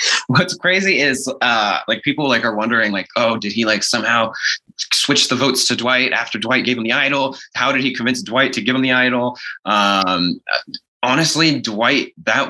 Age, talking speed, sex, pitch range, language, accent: 20-39, 190 wpm, male, 100-130 Hz, English, American